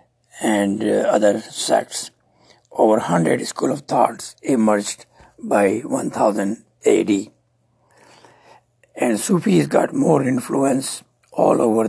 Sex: male